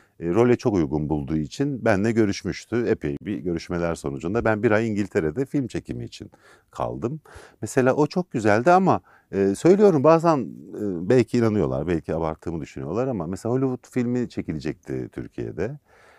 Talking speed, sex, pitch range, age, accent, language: 135 wpm, male, 85-120 Hz, 50-69, native, Turkish